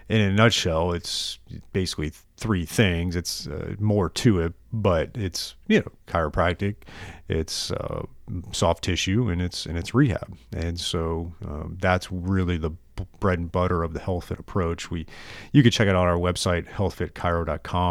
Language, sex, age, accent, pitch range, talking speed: English, male, 30-49, American, 85-100 Hz, 160 wpm